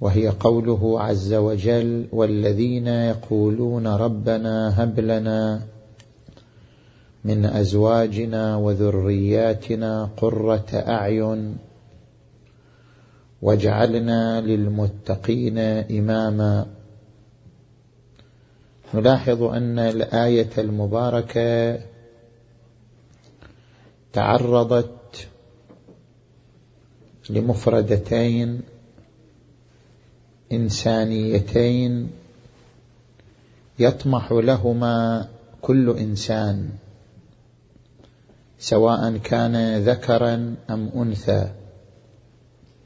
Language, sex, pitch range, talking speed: Arabic, male, 110-125 Hz, 45 wpm